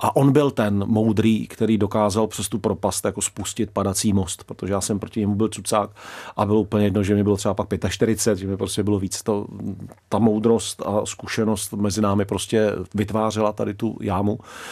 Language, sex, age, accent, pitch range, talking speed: Czech, male, 40-59, native, 105-125 Hz, 195 wpm